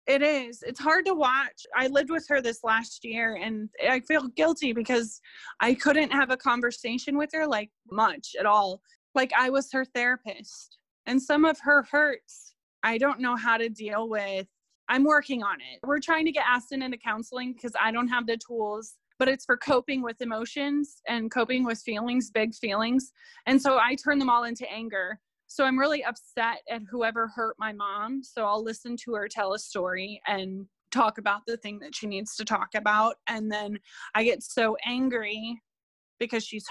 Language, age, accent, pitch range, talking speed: English, 20-39, American, 215-275 Hz, 195 wpm